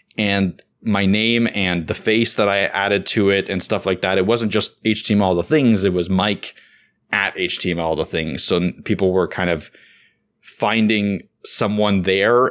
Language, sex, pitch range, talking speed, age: English, male, 90-110 Hz, 170 wpm, 20-39